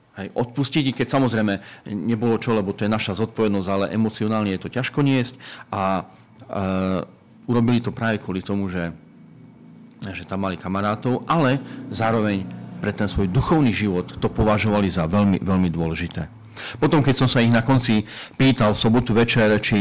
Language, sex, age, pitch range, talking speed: Slovak, male, 40-59, 95-130 Hz, 160 wpm